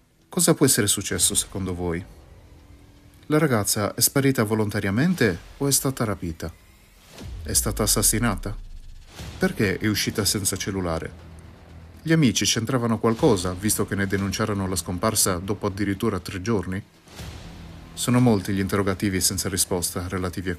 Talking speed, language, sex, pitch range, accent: 130 wpm, Italian, male, 90-110 Hz, native